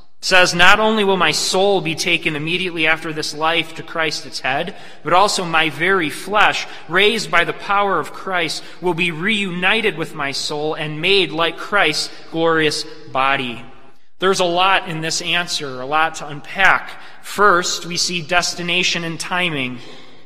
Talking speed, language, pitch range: 165 wpm, English, 160-200 Hz